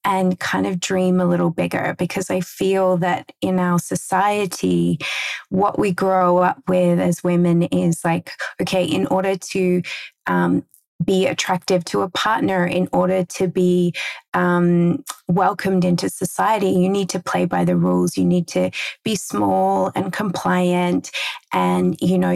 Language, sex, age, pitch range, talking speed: English, female, 20-39, 175-190 Hz, 155 wpm